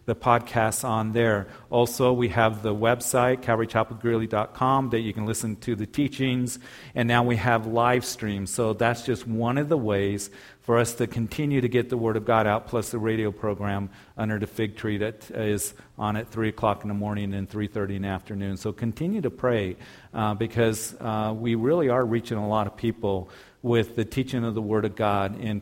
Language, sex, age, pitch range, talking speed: English, male, 50-69, 105-120 Hz, 205 wpm